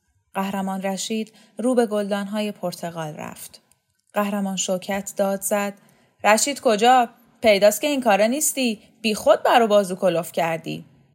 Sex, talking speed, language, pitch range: female, 135 wpm, Persian, 180-250 Hz